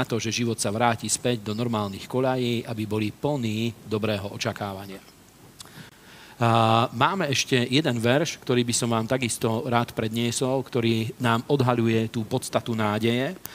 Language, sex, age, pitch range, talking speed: Slovak, male, 40-59, 115-135 Hz, 140 wpm